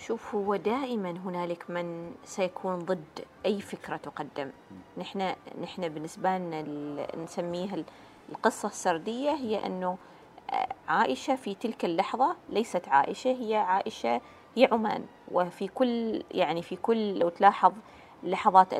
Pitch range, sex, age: 175-220 Hz, female, 30-49